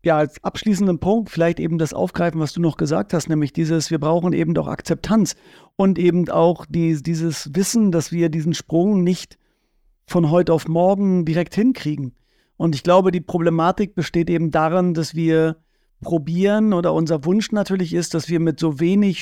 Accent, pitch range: German, 165-190 Hz